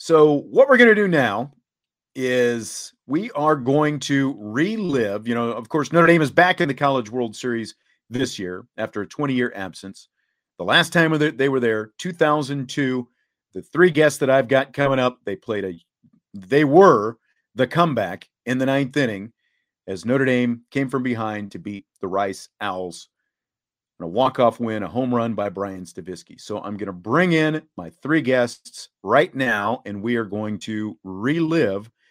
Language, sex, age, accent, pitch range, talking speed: English, male, 40-59, American, 110-150 Hz, 175 wpm